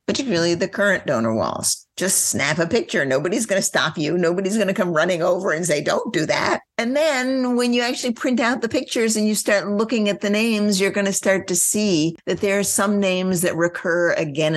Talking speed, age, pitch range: 225 wpm, 50-69, 160-205 Hz